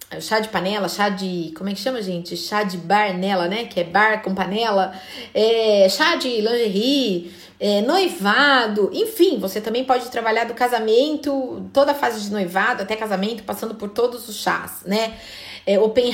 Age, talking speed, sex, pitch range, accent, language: 30-49, 165 wpm, female, 210-280 Hz, Brazilian, Portuguese